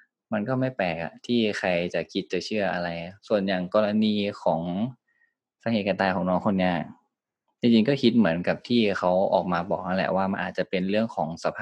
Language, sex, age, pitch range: Thai, male, 20-39, 90-110 Hz